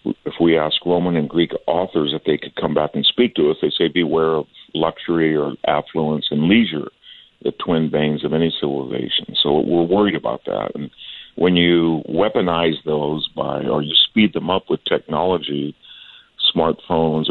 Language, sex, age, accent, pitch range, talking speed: English, male, 50-69, American, 80-90 Hz, 175 wpm